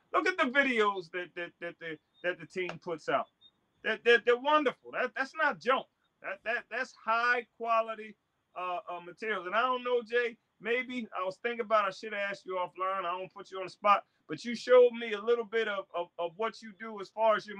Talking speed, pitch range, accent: 240 wpm, 175-230 Hz, American